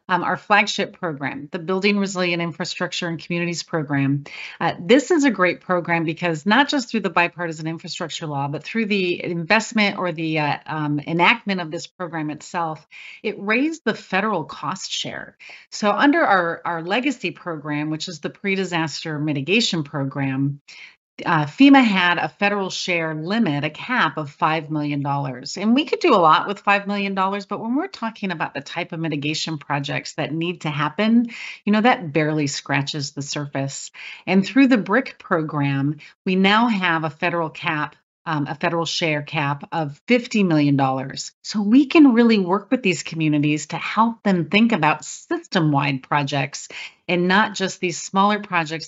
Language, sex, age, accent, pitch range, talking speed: English, female, 30-49, American, 155-200 Hz, 170 wpm